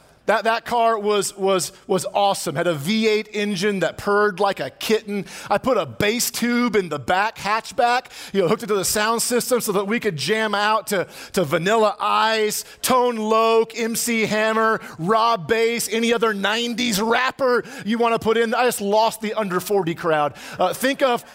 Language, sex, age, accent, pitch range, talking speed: English, male, 40-59, American, 205-255 Hz, 195 wpm